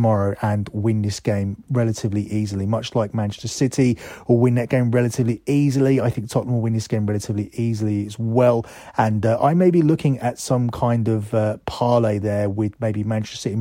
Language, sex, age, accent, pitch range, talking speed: English, male, 30-49, British, 110-130 Hz, 195 wpm